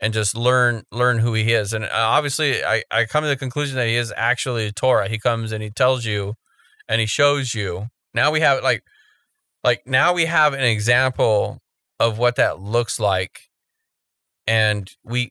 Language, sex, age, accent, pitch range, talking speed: English, male, 30-49, American, 110-135 Hz, 190 wpm